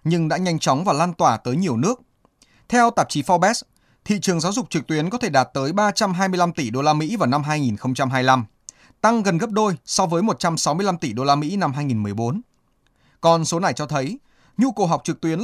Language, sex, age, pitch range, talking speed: Vietnamese, male, 20-39, 135-190 Hz, 260 wpm